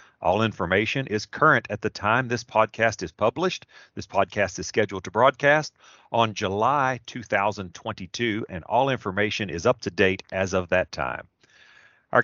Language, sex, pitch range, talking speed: English, male, 95-120 Hz, 155 wpm